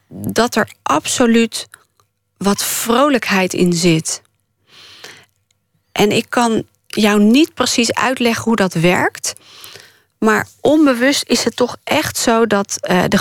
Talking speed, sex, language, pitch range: 120 wpm, female, Dutch, 200-245 Hz